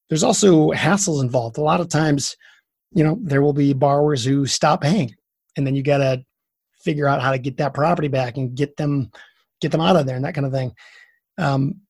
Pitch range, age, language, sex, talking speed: 140-170 Hz, 30-49, English, male, 220 wpm